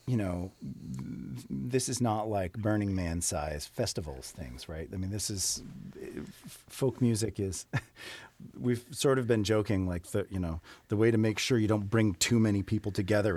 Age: 40-59